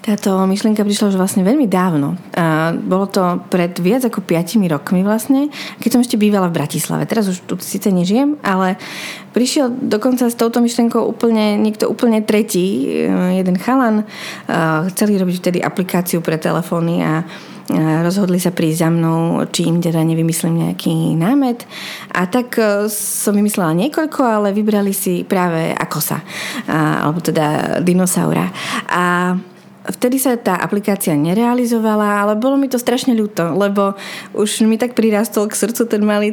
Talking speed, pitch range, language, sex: 150 wpm, 180-220 Hz, Slovak, female